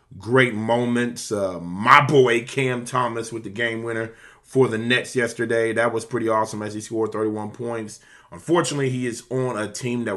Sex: male